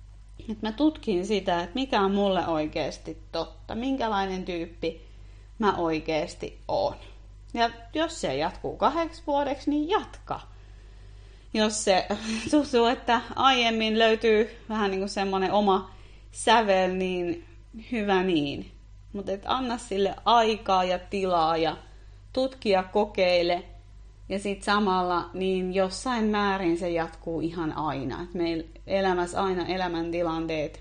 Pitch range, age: 155-210 Hz, 30-49